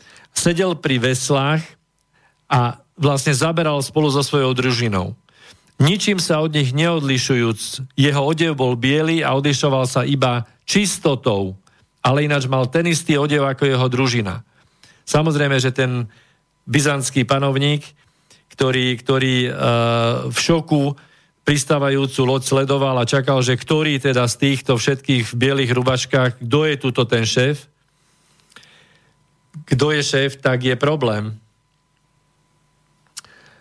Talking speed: 120 wpm